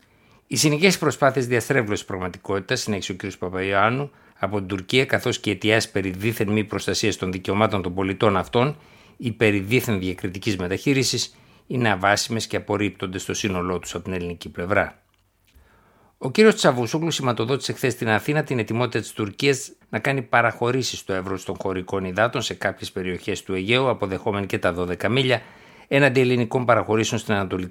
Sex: male